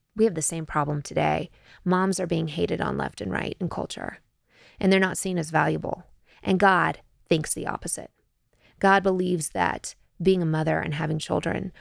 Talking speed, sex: 185 wpm, female